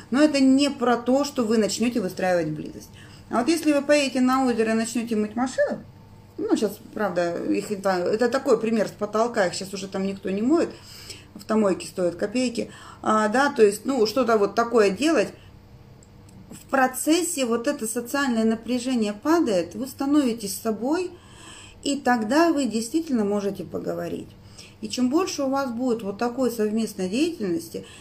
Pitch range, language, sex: 195-260 Hz, Russian, female